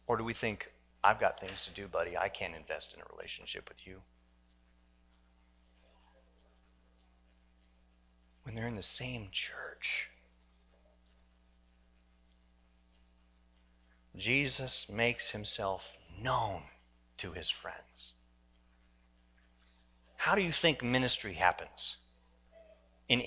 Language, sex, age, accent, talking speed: English, male, 40-59, American, 100 wpm